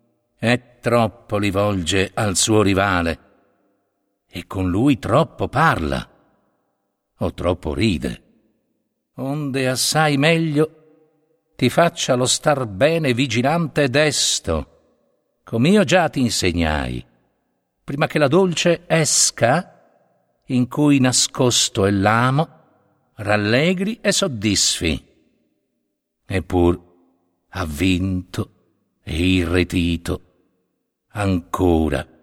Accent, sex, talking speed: native, male, 90 wpm